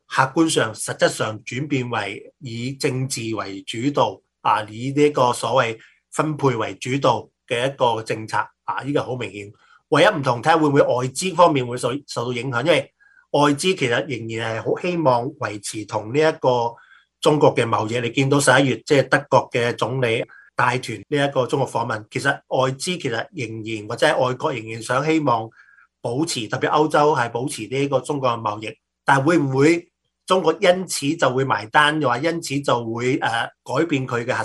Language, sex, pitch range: Chinese, male, 115-150 Hz